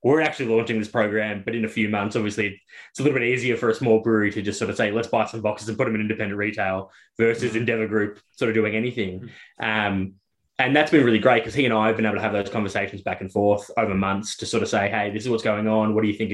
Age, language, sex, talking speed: 10-29, English, male, 285 wpm